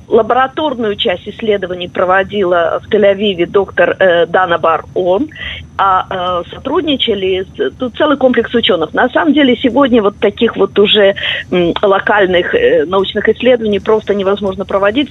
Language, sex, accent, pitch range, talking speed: Russian, female, native, 185-235 Hz, 135 wpm